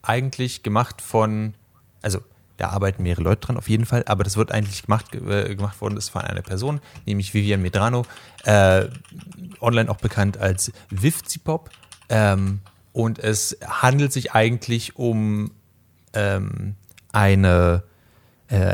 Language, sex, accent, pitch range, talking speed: German, male, German, 100-130 Hz, 135 wpm